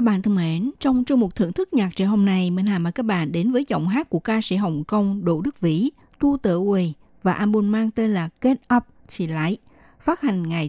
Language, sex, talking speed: Vietnamese, female, 245 wpm